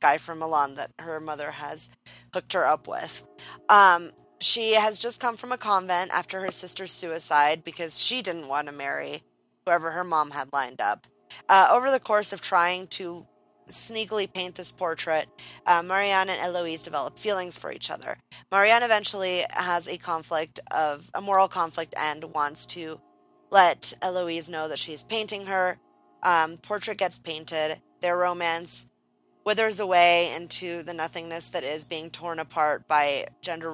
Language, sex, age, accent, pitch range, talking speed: English, female, 20-39, American, 160-205 Hz, 160 wpm